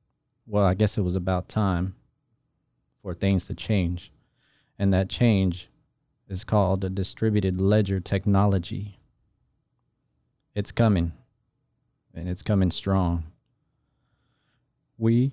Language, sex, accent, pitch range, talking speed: English, male, American, 95-115 Hz, 105 wpm